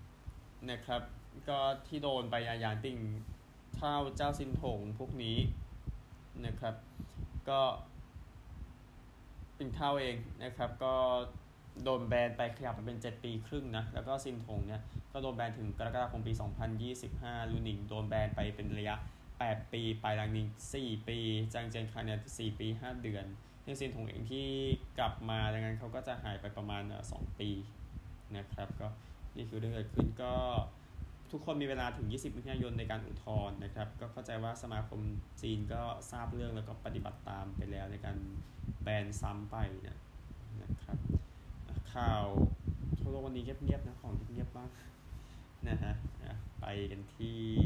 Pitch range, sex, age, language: 100-120 Hz, male, 20-39, Thai